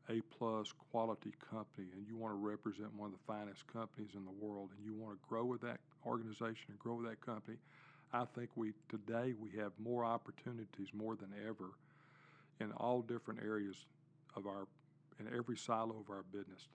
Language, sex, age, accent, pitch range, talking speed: English, male, 50-69, American, 105-125 Hz, 190 wpm